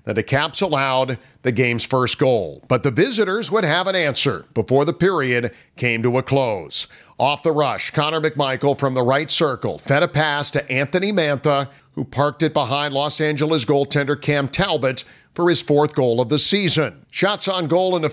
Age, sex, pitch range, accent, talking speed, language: 50-69, male, 135-175 Hz, American, 190 wpm, English